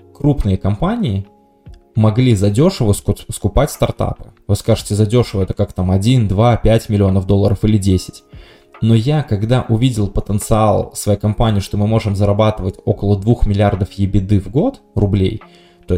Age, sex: 20-39, male